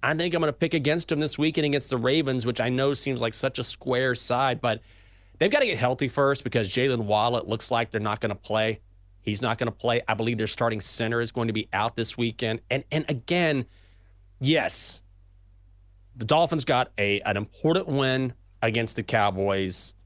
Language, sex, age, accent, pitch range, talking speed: English, male, 30-49, American, 105-130 Hz, 210 wpm